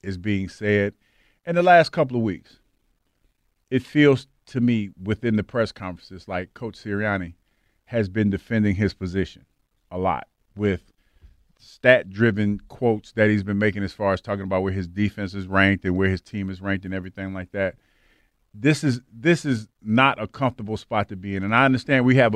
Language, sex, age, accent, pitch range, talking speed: English, male, 40-59, American, 100-125 Hz, 190 wpm